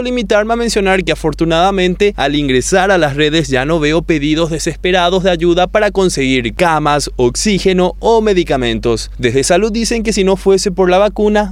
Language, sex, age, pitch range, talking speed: Spanish, male, 20-39, 160-210 Hz, 170 wpm